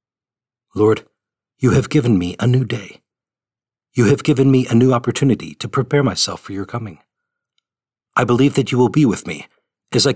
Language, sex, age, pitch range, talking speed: English, male, 40-59, 115-135 Hz, 185 wpm